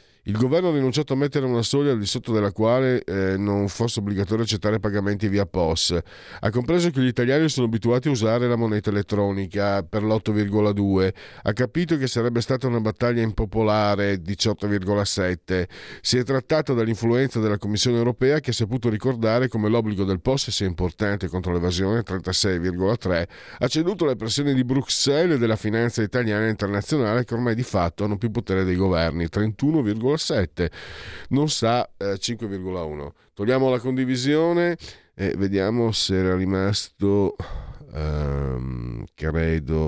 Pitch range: 95-125 Hz